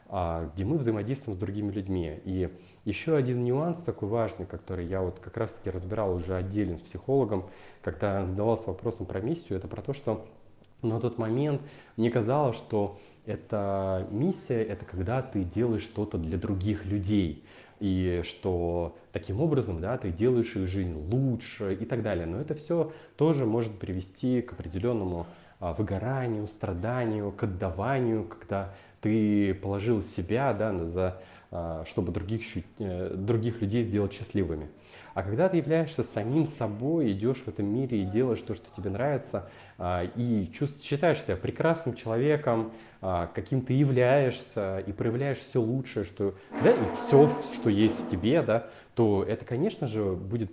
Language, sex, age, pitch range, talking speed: Russian, male, 20-39, 95-125 Hz, 150 wpm